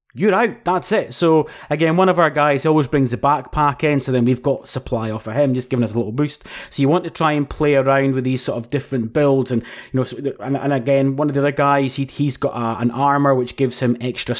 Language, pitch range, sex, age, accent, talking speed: English, 125-155 Hz, male, 30-49, British, 255 wpm